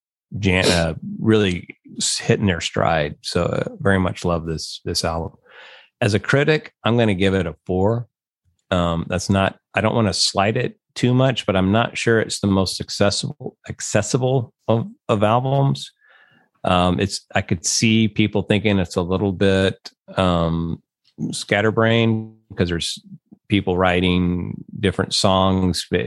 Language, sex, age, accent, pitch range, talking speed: English, male, 30-49, American, 85-105 Hz, 150 wpm